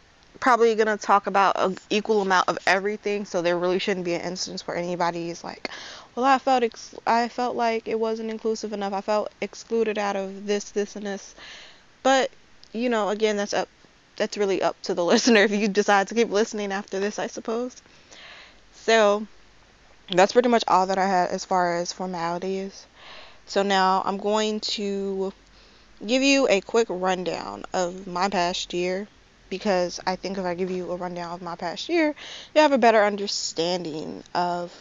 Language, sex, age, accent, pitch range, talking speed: English, female, 20-39, American, 180-220 Hz, 185 wpm